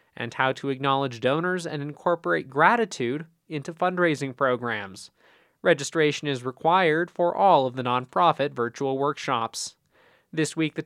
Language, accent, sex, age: English, American, male, 20-39